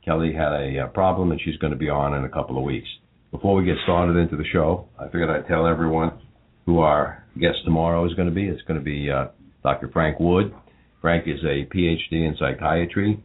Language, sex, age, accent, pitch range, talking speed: English, male, 50-69, American, 75-95 Hz, 220 wpm